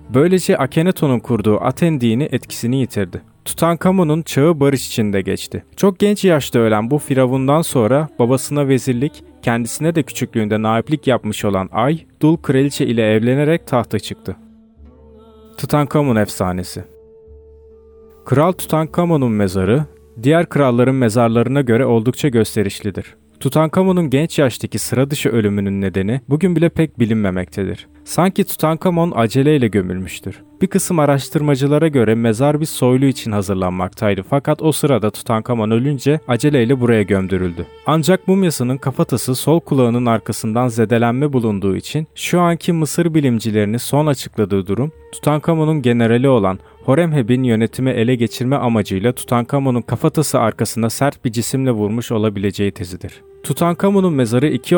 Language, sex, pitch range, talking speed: Turkish, male, 110-150 Hz, 125 wpm